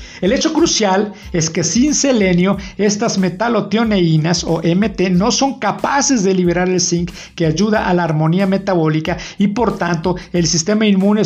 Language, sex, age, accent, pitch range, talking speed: Spanish, male, 50-69, Mexican, 165-205 Hz, 160 wpm